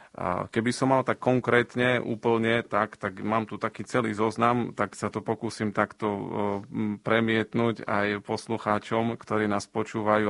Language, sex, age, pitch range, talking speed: Slovak, male, 40-59, 100-110 Hz, 140 wpm